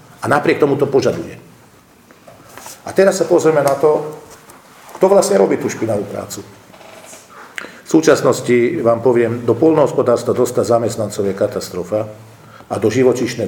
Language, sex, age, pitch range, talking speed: Slovak, male, 50-69, 105-140 Hz, 135 wpm